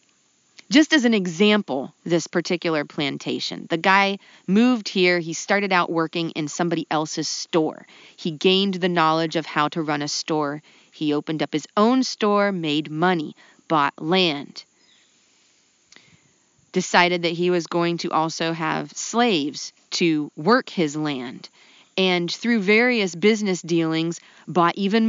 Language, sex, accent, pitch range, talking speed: English, female, American, 170-235 Hz, 140 wpm